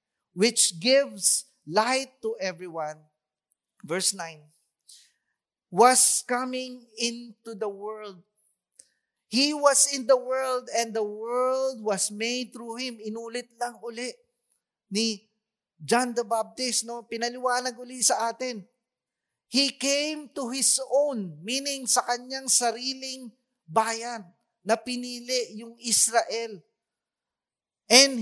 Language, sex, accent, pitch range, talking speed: English, male, Filipino, 185-245 Hz, 110 wpm